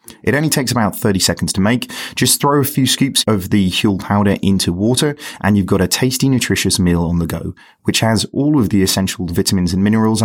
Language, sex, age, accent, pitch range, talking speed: English, male, 30-49, British, 95-125 Hz, 225 wpm